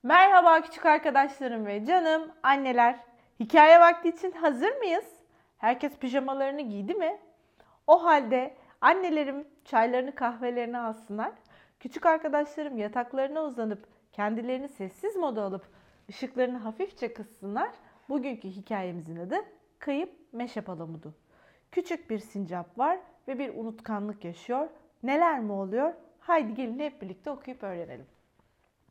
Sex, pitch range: female, 220-330 Hz